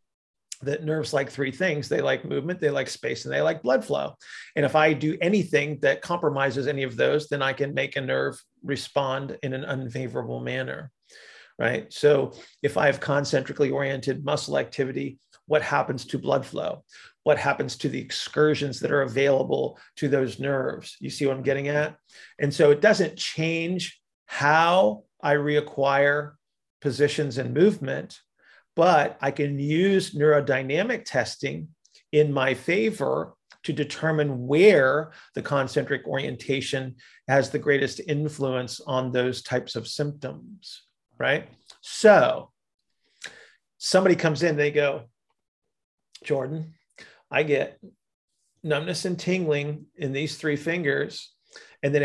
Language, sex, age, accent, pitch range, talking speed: English, male, 40-59, American, 135-155 Hz, 140 wpm